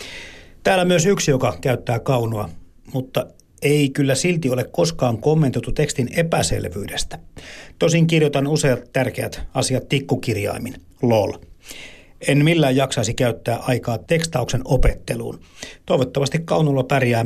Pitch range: 110-145 Hz